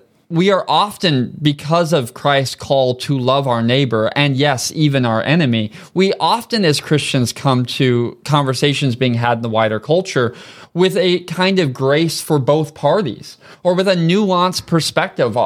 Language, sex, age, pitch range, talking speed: English, male, 20-39, 135-170 Hz, 165 wpm